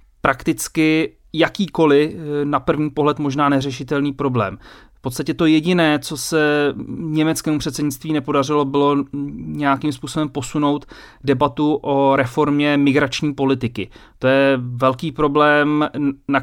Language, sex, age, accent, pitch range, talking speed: Czech, male, 30-49, native, 130-150 Hz, 115 wpm